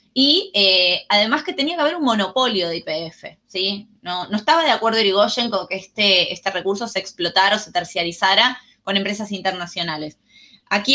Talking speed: 175 wpm